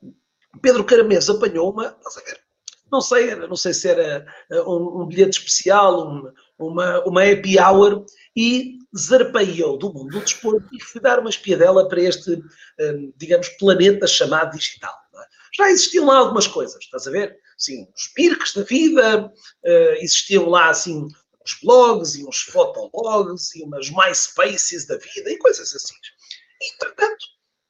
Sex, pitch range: male, 180-295 Hz